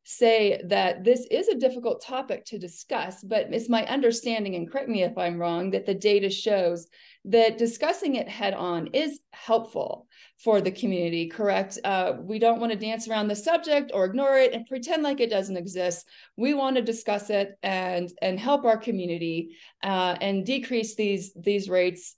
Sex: female